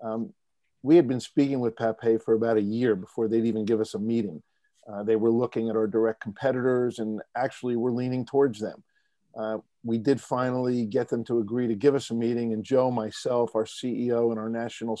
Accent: American